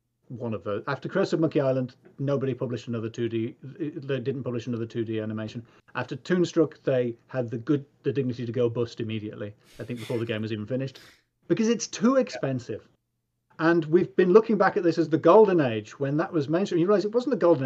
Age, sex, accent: 40-59, male, British